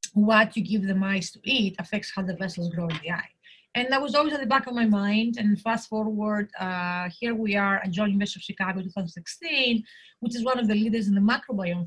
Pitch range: 185-220 Hz